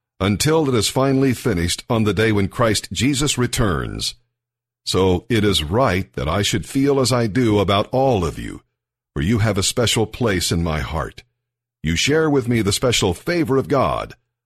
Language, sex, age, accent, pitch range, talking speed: English, male, 50-69, American, 100-125 Hz, 185 wpm